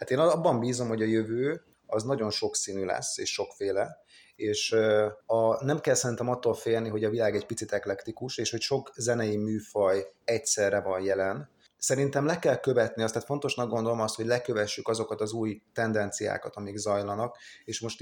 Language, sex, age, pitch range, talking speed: Hungarian, male, 30-49, 105-120 Hz, 175 wpm